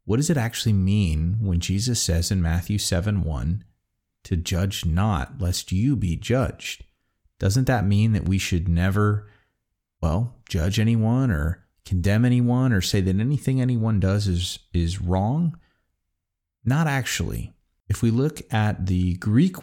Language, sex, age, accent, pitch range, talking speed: English, male, 30-49, American, 90-115 Hz, 150 wpm